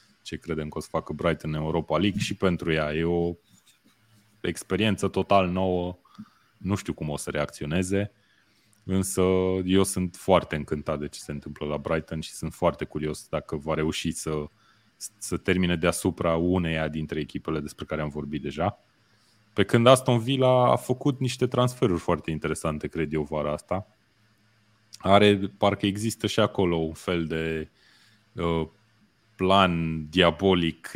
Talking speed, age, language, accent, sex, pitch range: 155 wpm, 20-39, Romanian, native, male, 80-105 Hz